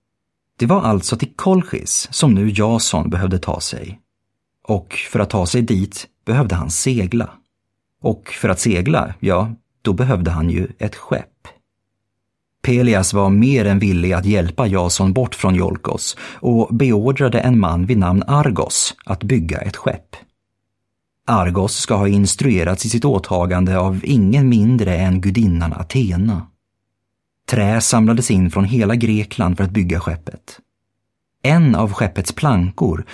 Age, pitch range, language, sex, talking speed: 30-49, 95-115 Hz, Swedish, male, 145 wpm